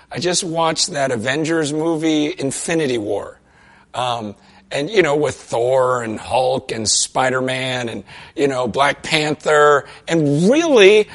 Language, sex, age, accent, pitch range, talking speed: English, male, 50-69, American, 165-260 Hz, 135 wpm